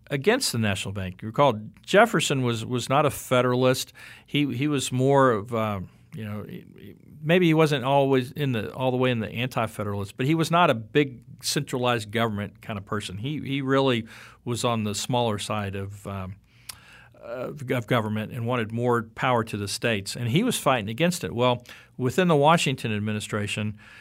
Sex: male